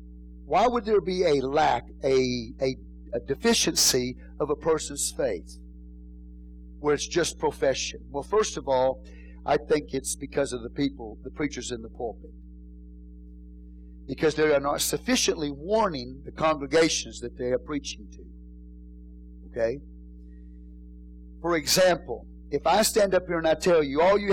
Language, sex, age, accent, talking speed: English, male, 50-69, American, 150 wpm